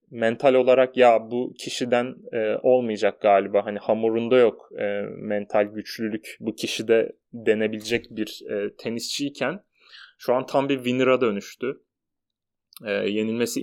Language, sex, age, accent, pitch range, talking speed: Turkish, male, 30-49, native, 115-135 Hz, 105 wpm